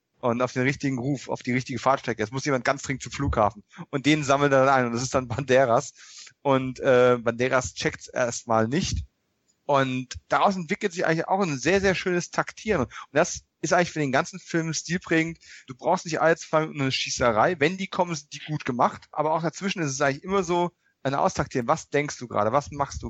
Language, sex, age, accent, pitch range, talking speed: German, male, 30-49, German, 125-160 Hz, 220 wpm